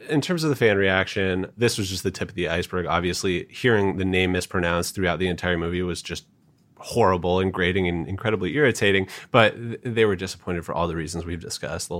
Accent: American